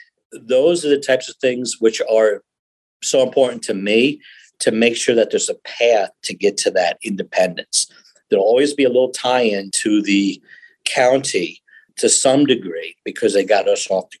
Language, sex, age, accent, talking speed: English, male, 50-69, American, 175 wpm